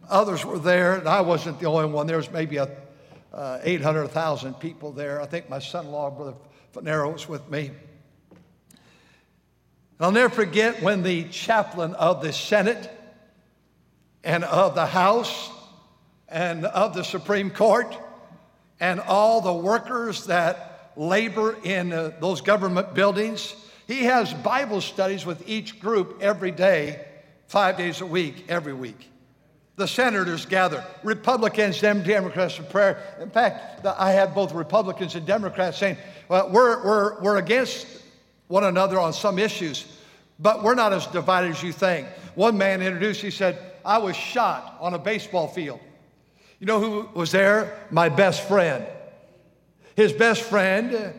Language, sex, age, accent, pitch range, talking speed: English, male, 60-79, American, 165-205 Hz, 150 wpm